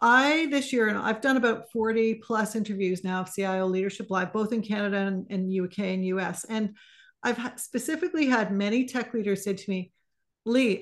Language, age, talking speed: English, 40-59, 190 wpm